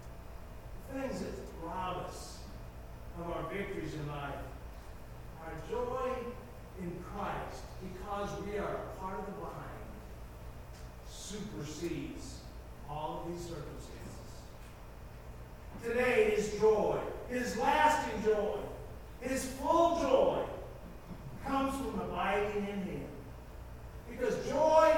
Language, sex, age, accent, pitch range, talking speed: English, male, 50-69, American, 155-260 Hz, 100 wpm